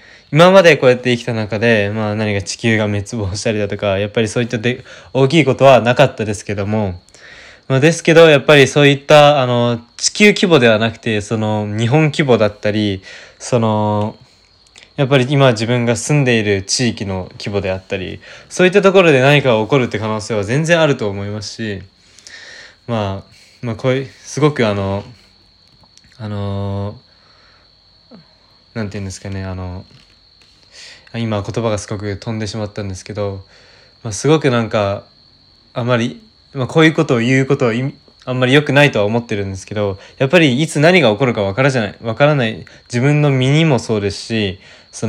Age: 20-39